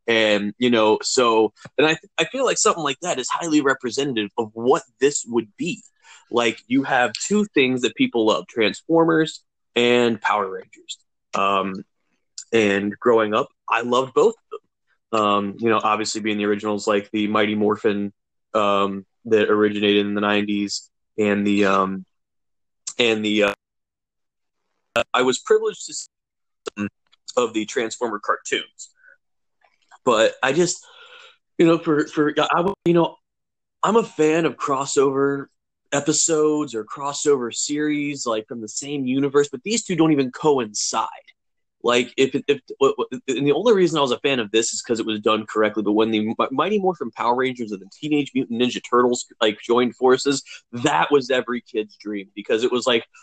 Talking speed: 170 wpm